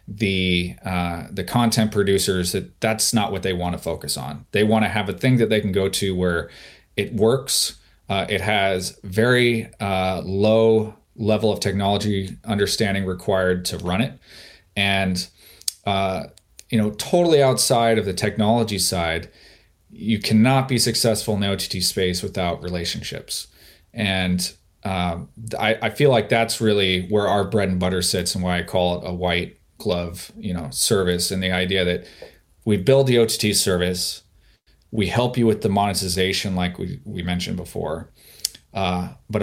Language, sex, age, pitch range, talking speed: English, male, 30-49, 90-110 Hz, 165 wpm